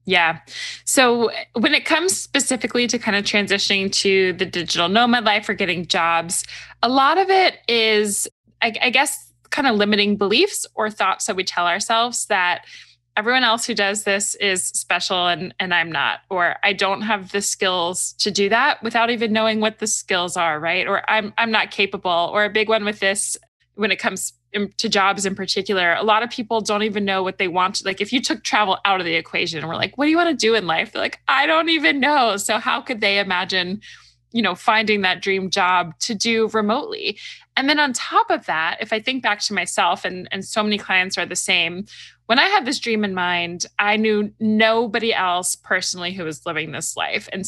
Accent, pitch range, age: American, 185-230 Hz, 20-39